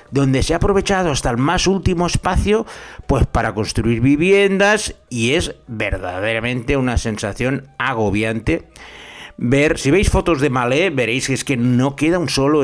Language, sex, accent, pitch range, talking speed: Spanish, male, Spanish, 110-145 Hz, 155 wpm